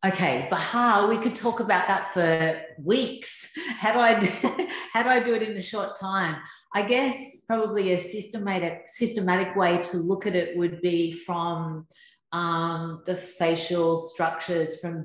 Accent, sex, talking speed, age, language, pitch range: Australian, female, 165 wpm, 40-59, English, 165-215 Hz